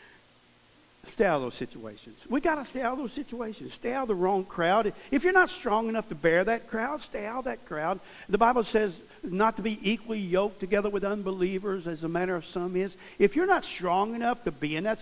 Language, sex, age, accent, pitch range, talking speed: English, male, 50-69, American, 160-245 Hz, 230 wpm